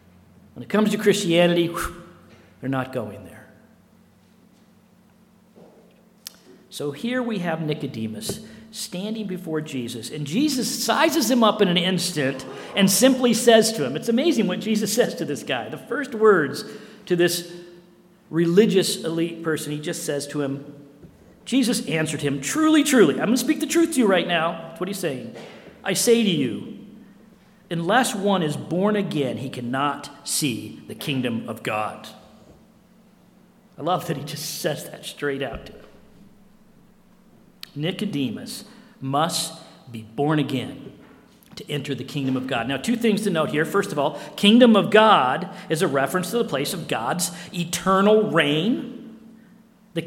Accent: American